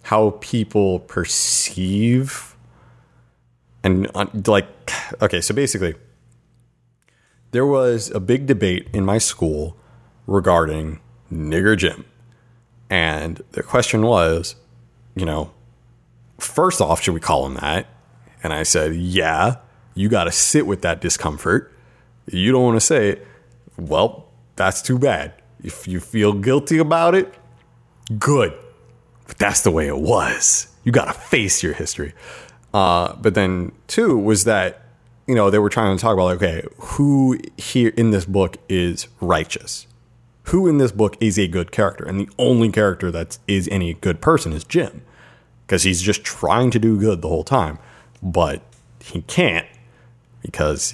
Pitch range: 85-120 Hz